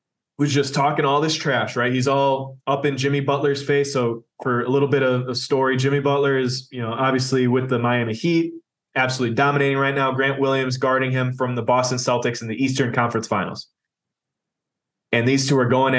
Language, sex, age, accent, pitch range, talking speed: English, male, 20-39, American, 120-140 Hz, 205 wpm